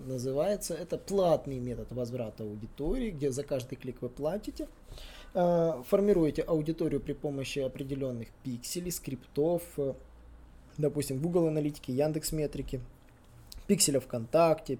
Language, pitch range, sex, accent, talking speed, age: Russian, 130-175 Hz, male, native, 115 wpm, 20-39